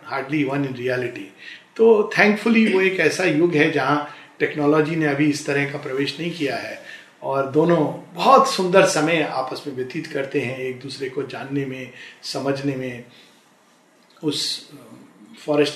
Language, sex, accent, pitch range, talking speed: Hindi, male, native, 145-225 Hz, 160 wpm